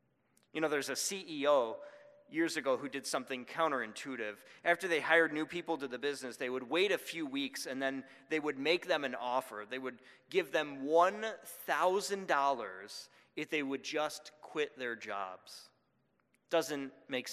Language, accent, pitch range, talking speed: English, American, 135-175 Hz, 165 wpm